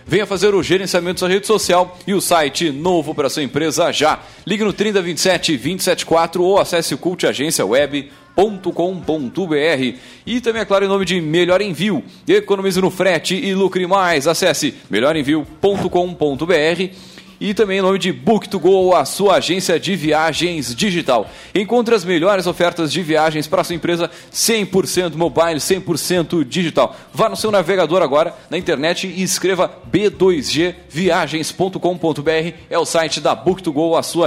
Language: Portuguese